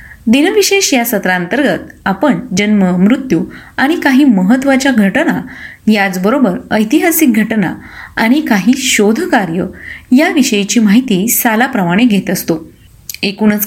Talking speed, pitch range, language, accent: 95 wpm, 200-270 Hz, Marathi, native